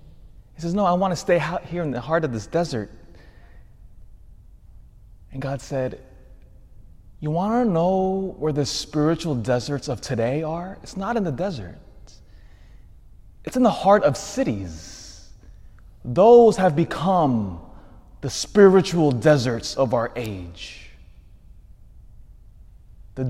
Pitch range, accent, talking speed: 110-165 Hz, American, 125 wpm